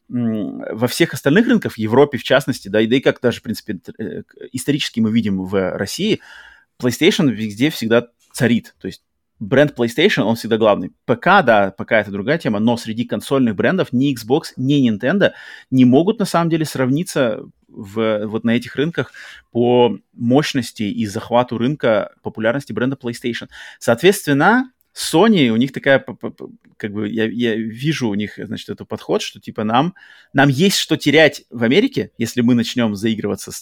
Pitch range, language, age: 110-145 Hz, Russian, 30-49